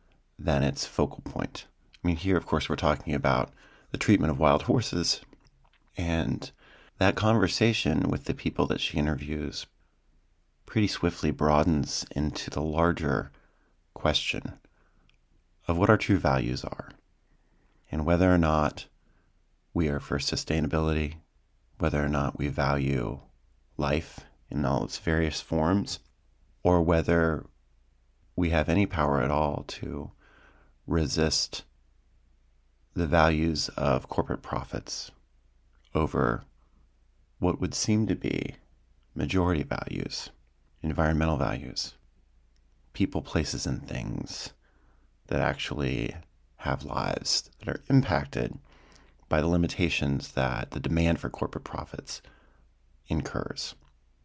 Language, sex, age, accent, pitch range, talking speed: English, male, 40-59, American, 70-85 Hz, 115 wpm